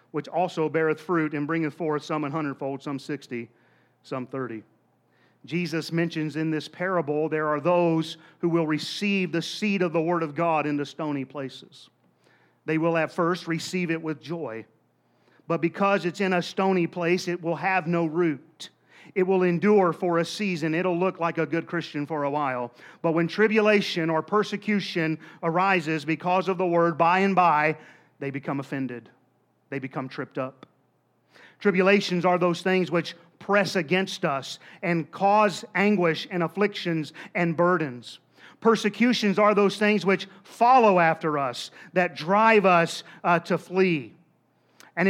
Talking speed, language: 160 wpm, English